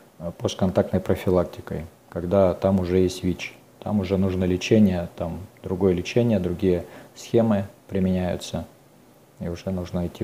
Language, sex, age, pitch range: Russian, male, 40-59, 90-110 Hz